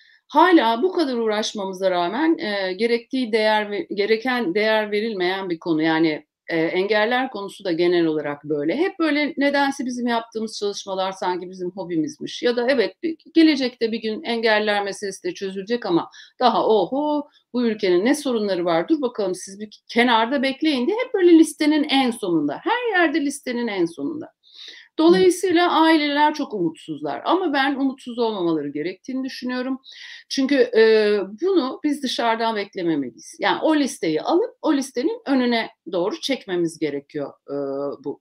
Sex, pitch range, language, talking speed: female, 200-310 Hz, Turkish, 145 wpm